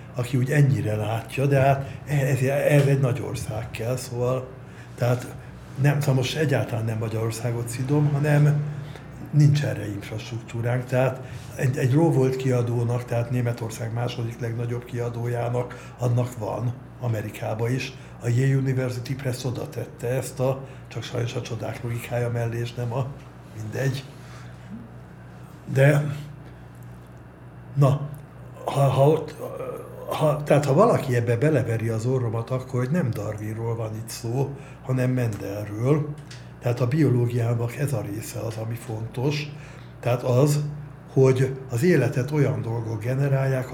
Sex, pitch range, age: male, 115-135 Hz, 60-79